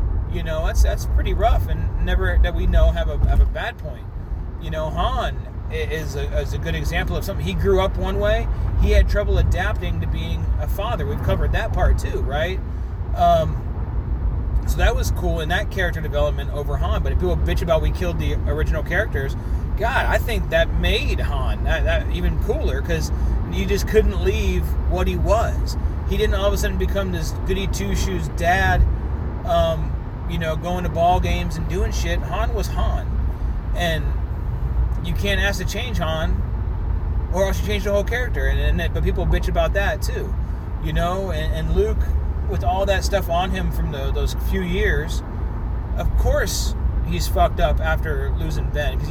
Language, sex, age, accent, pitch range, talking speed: English, male, 30-49, American, 75-90 Hz, 190 wpm